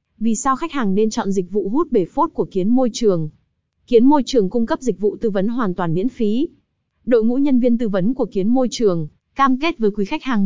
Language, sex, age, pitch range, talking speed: Vietnamese, female, 20-39, 195-260 Hz, 250 wpm